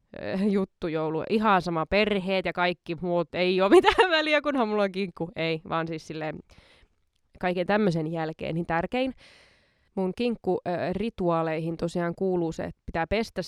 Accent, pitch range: native, 165-220 Hz